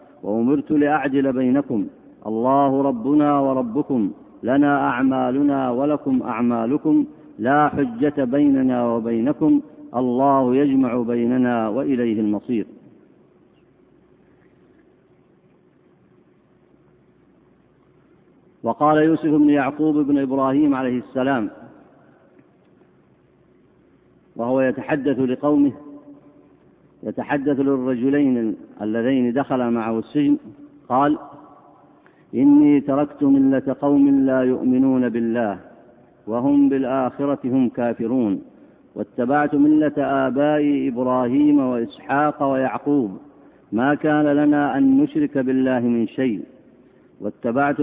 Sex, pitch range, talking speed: male, 125-145 Hz, 80 wpm